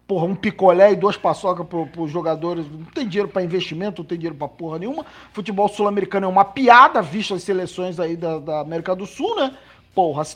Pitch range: 175-260 Hz